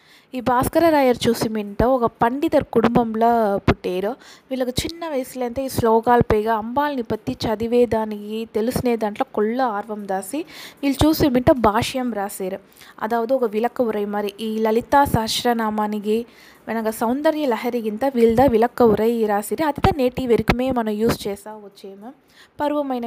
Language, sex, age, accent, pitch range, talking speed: Telugu, female, 20-39, native, 220-265 Hz, 135 wpm